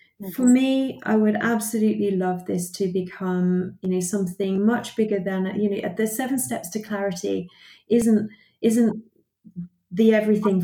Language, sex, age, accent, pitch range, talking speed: English, female, 30-49, British, 185-210 Hz, 145 wpm